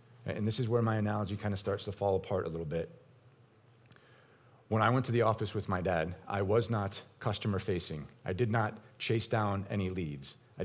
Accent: American